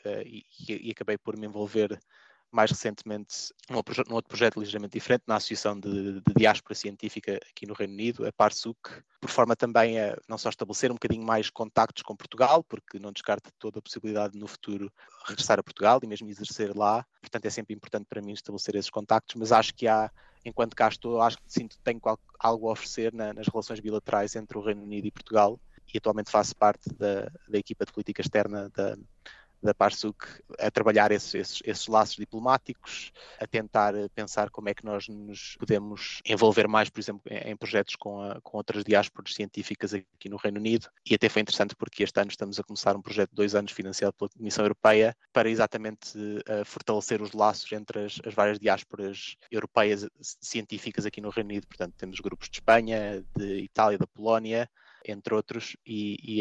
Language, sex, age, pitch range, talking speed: Portuguese, male, 20-39, 105-110 Hz, 200 wpm